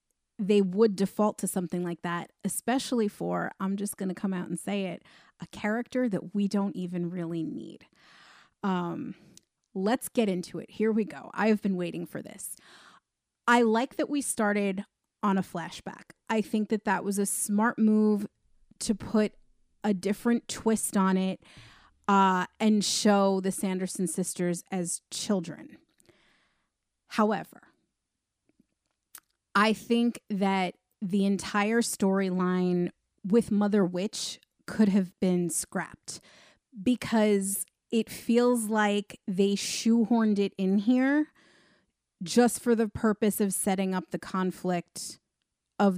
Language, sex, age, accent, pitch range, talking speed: English, female, 30-49, American, 185-220 Hz, 135 wpm